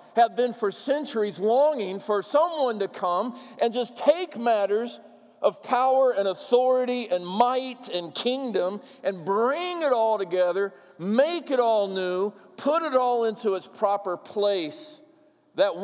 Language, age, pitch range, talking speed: English, 50-69, 180-235 Hz, 145 wpm